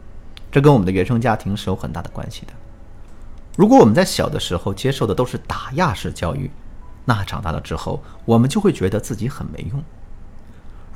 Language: Chinese